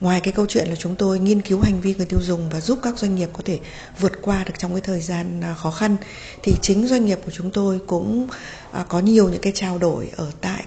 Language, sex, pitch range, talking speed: Vietnamese, female, 170-210 Hz, 260 wpm